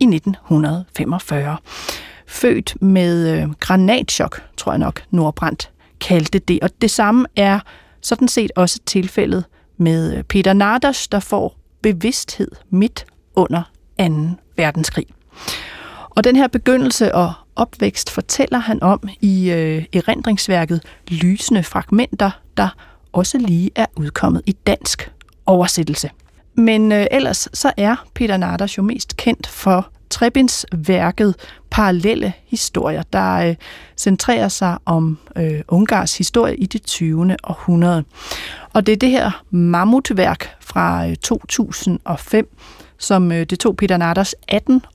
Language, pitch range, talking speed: Danish, 175-220 Hz, 125 wpm